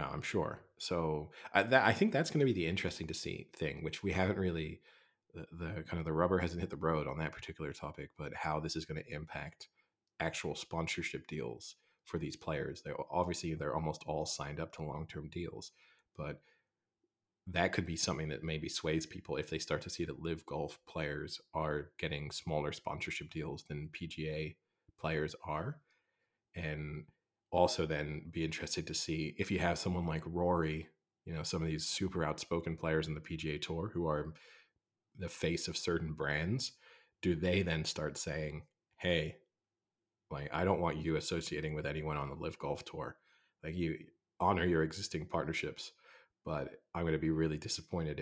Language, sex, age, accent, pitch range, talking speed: English, male, 30-49, American, 75-85 Hz, 185 wpm